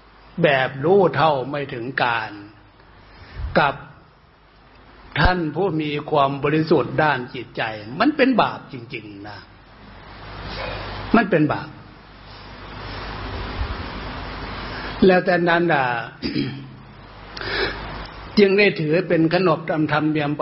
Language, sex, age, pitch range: Thai, male, 60-79, 120-160 Hz